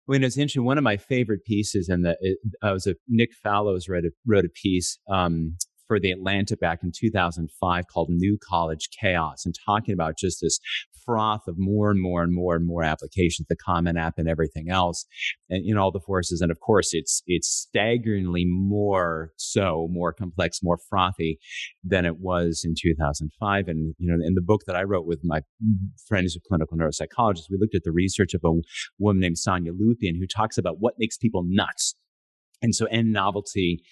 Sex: male